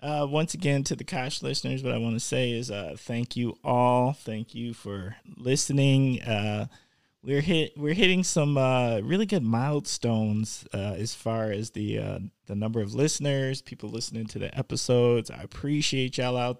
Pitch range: 110-135 Hz